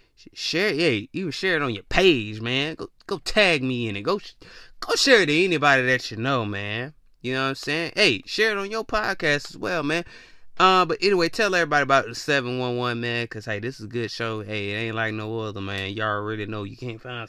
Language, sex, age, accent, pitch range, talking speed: English, male, 20-39, American, 100-135 Hz, 245 wpm